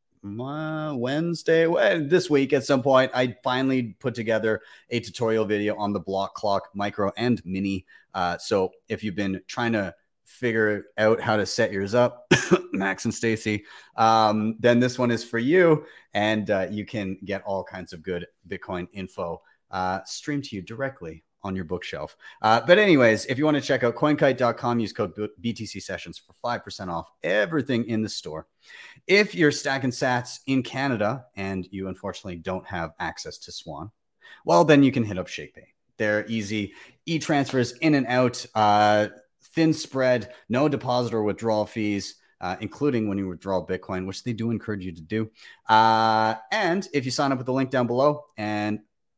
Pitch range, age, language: 100-130 Hz, 30-49, English